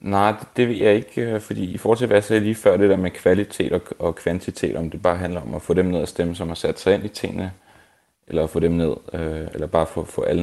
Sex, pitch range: male, 85-110 Hz